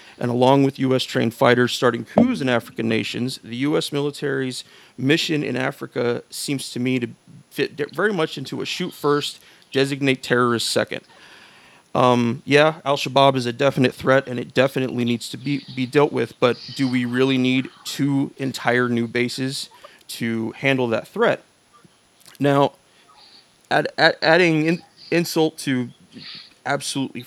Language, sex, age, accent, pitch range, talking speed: English, male, 30-49, American, 120-140 Hz, 135 wpm